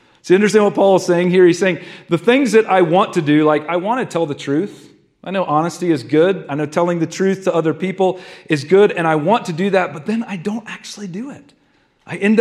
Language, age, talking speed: English, 40-59, 255 wpm